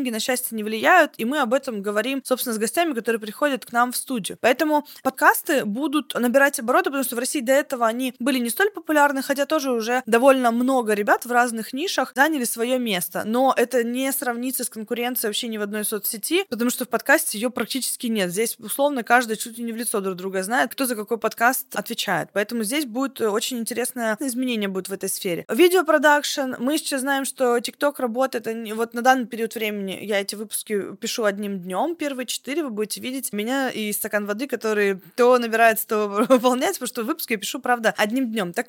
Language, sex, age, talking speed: Russian, female, 20-39, 205 wpm